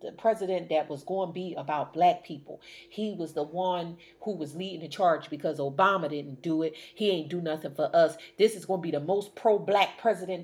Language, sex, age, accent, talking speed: English, female, 30-49, American, 230 wpm